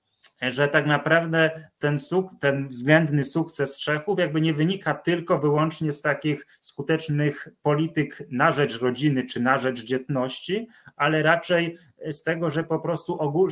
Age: 20-39